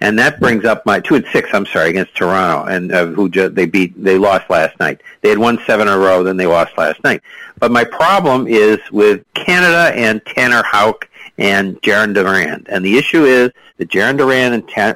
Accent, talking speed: American, 220 wpm